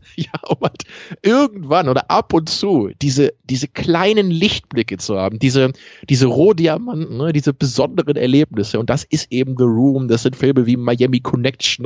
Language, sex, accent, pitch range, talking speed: German, male, German, 115-145 Hz, 160 wpm